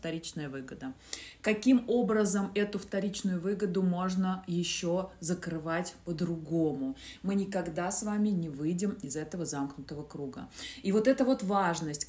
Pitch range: 165-205 Hz